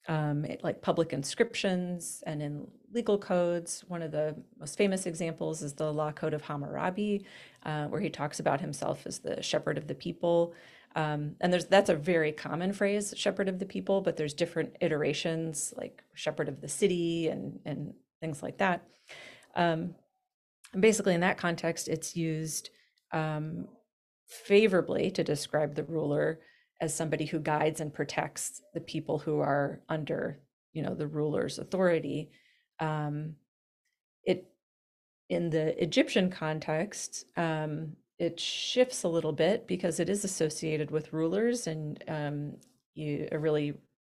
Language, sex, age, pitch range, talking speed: English, female, 30-49, 150-180 Hz, 150 wpm